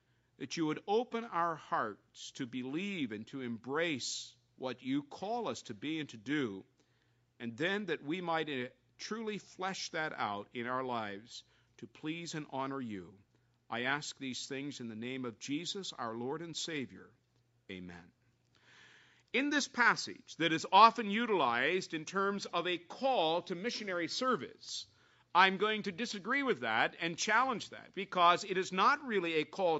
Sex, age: male, 50-69